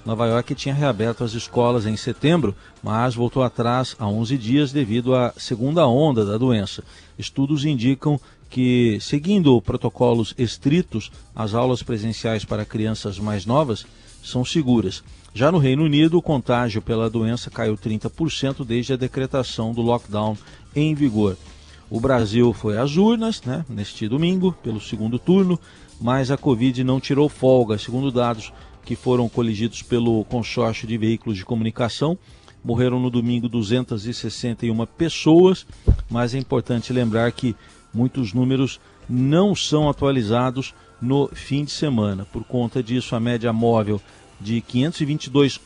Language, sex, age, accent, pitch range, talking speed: Portuguese, male, 40-59, Brazilian, 110-135 Hz, 140 wpm